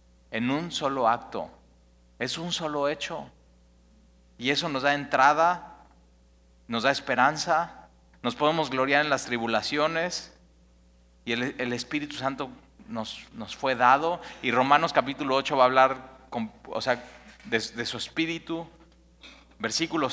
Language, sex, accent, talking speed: Spanish, male, Mexican, 130 wpm